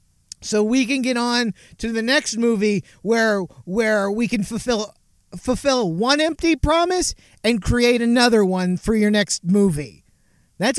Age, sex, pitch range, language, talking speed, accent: 40-59, male, 180-235 Hz, English, 150 wpm, American